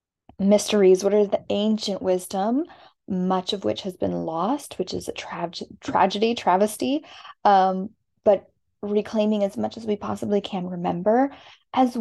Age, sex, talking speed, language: 10-29, female, 140 wpm, English